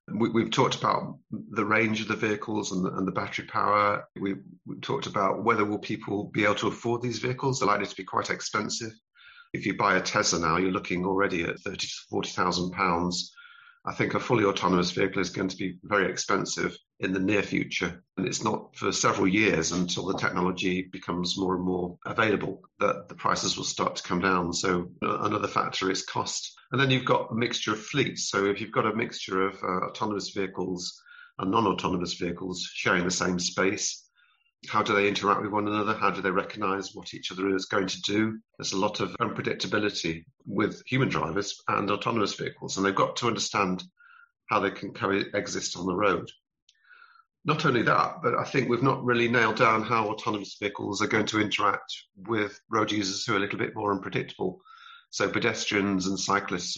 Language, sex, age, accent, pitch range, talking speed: English, male, 40-59, British, 90-110 Hz, 200 wpm